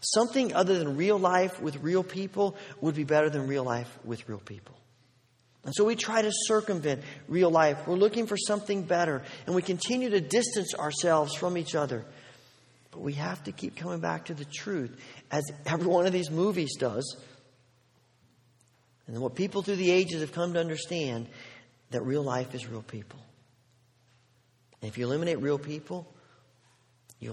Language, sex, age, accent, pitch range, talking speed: English, male, 40-59, American, 125-190 Hz, 175 wpm